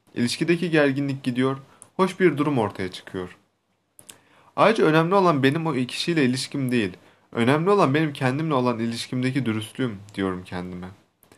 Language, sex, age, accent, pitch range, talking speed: Turkish, male, 30-49, native, 115-160 Hz, 130 wpm